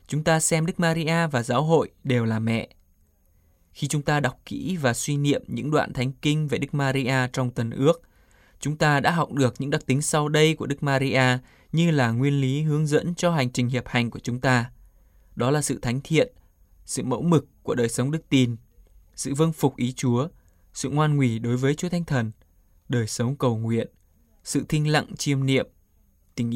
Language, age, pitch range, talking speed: Vietnamese, 20-39, 115-145 Hz, 210 wpm